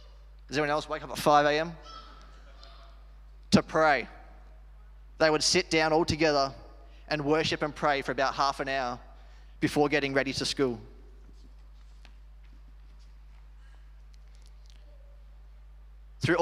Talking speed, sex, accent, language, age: 110 wpm, male, Australian, English, 20-39